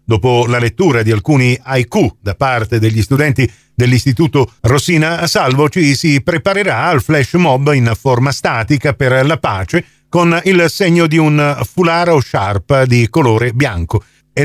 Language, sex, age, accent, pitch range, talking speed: Italian, male, 50-69, native, 125-170 Hz, 155 wpm